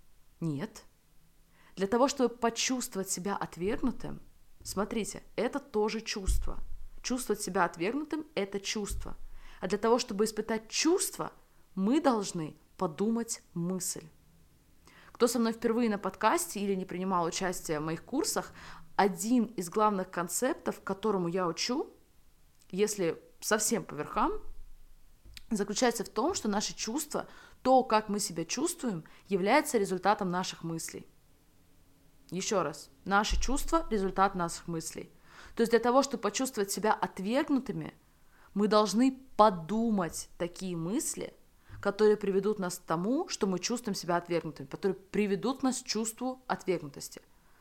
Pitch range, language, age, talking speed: 180-235 Hz, Russian, 20-39, 125 wpm